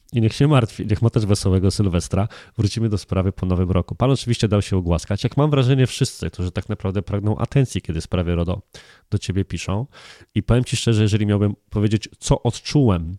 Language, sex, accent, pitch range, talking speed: Polish, male, native, 95-120 Hz, 200 wpm